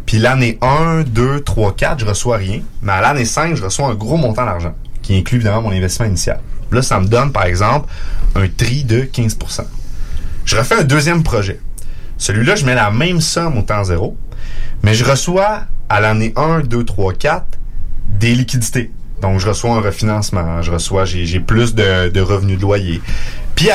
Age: 30-49